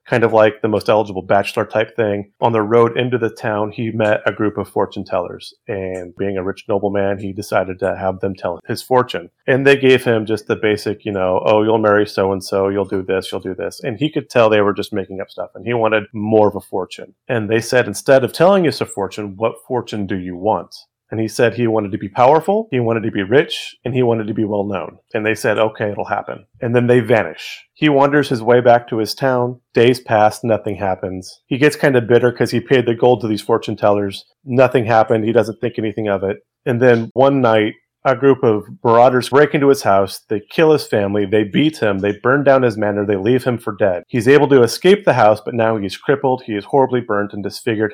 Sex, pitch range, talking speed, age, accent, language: male, 105-125 Hz, 240 wpm, 30-49, American, English